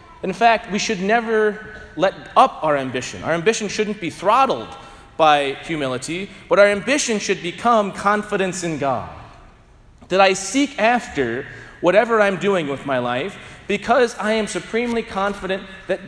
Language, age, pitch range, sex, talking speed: English, 30-49, 155-225 Hz, male, 150 wpm